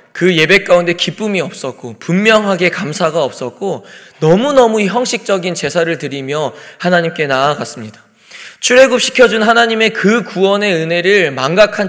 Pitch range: 145-195 Hz